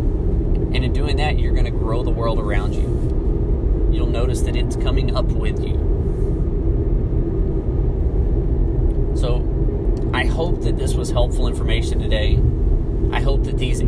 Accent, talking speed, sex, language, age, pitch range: American, 145 wpm, male, English, 30-49, 80-110 Hz